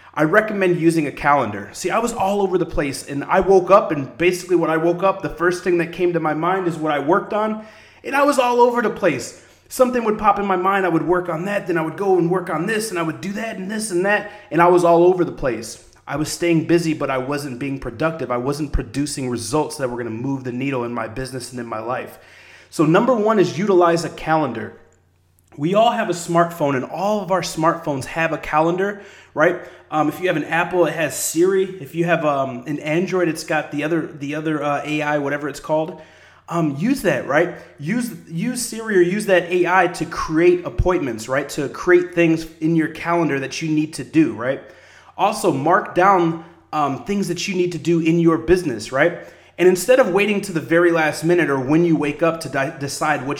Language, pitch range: English, 145-185 Hz